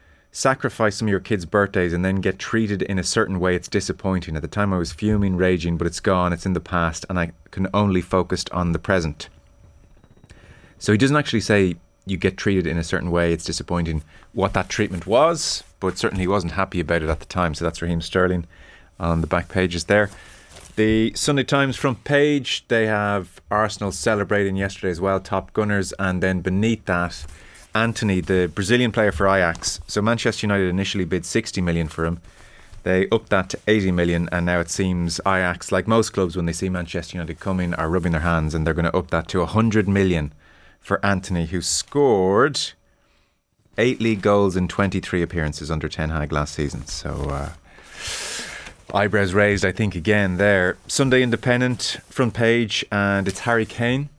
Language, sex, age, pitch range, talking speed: English, male, 30-49, 85-105 Hz, 190 wpm